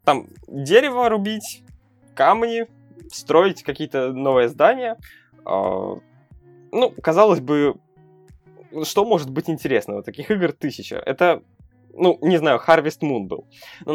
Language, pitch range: Russian, 120-160 Hz